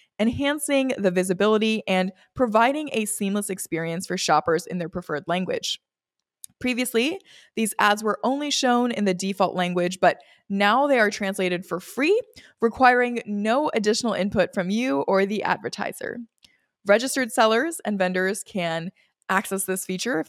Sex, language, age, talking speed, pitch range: female, English, 20-39, 145 wpm, 185-245 Hz